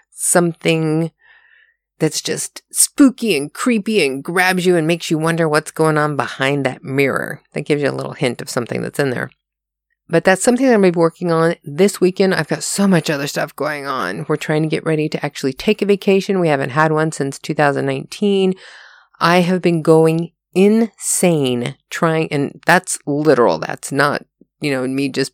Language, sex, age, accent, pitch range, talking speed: English, female, 30-49, American, 155-200 Hz, 185 wpm